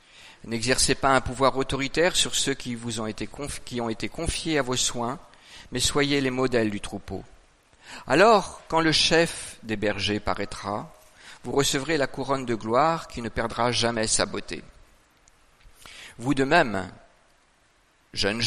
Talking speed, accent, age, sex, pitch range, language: 155 wpm, French, 50-69, male, 105-140 Hz, French